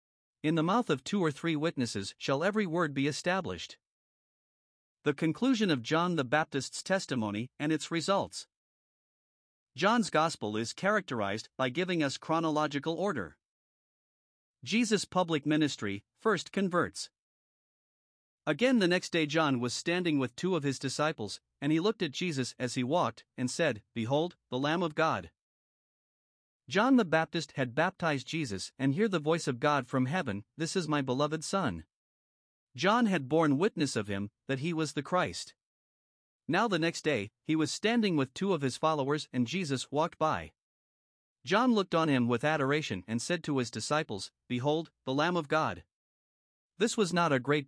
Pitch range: 130-170 Hz